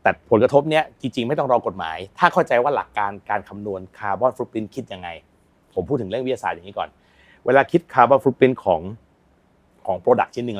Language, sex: Thai, male